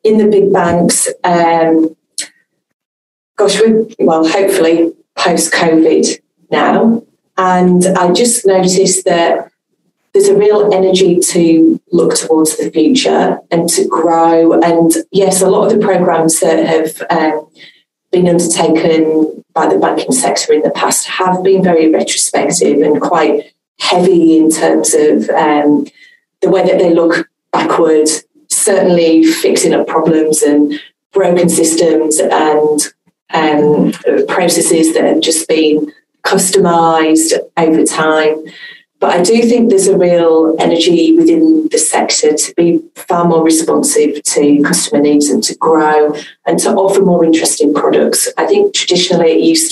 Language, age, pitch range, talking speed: English, 30-49, 160-200 Hz, 140 wpm